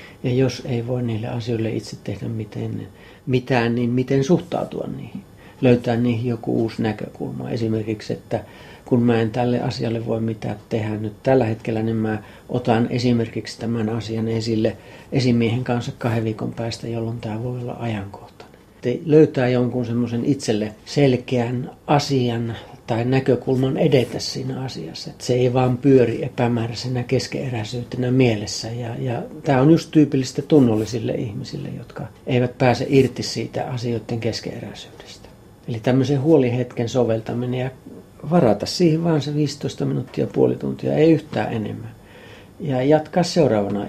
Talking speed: 140 wpm